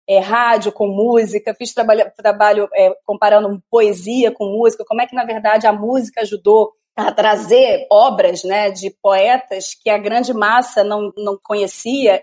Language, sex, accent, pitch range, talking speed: Portuguese, female, Brazilian, 210-270 Hz, 160 wpm